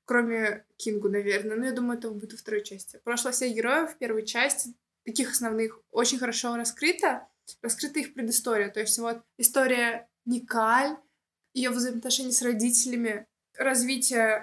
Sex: female